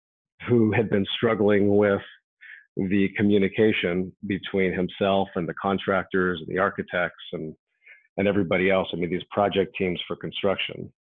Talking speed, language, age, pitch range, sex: 140 wpm, English, 40-59, 90-105 Hz, male